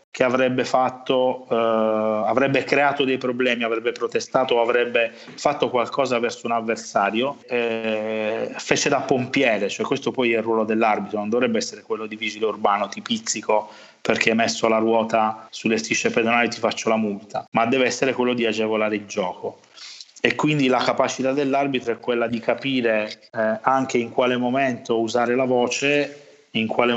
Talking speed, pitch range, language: 165 wpm, 110-130 Hz, Italian